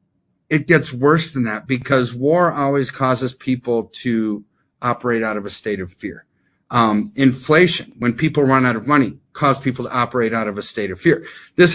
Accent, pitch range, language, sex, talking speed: American, 120-150 Hz, English, male, 190 wpm